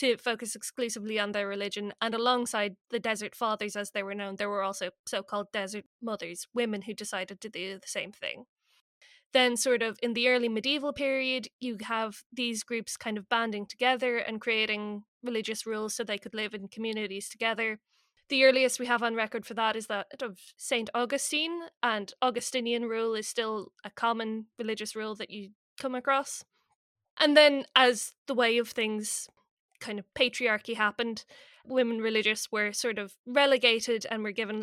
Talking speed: 175 wpm